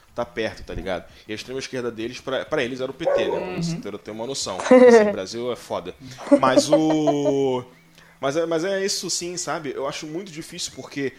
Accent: Brazilian